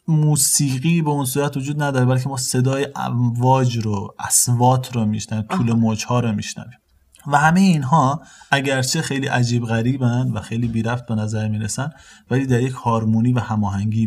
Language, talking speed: Persian, 165 wpm